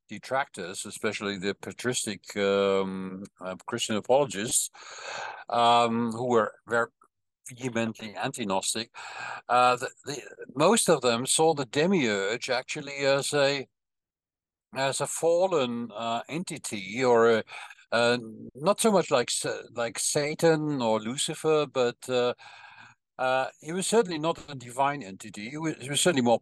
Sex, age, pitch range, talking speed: male, 60-79, 115-145 Hz, 130 wpm